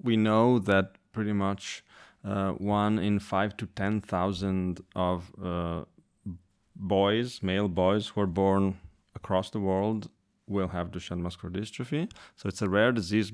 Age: 30-49